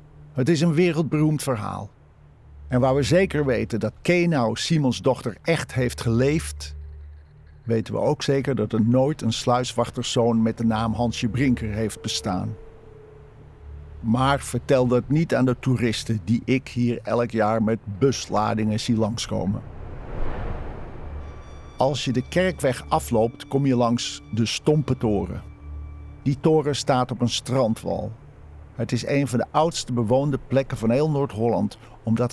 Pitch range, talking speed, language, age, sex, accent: 110-130 Hz, 145 wpm, Dutch, 50-69, male, Dutch